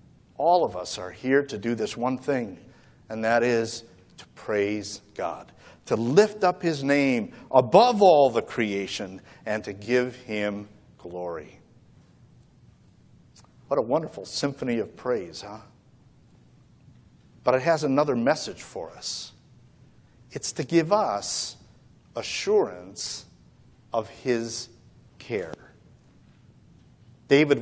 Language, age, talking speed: English, 50-69, 115 wpm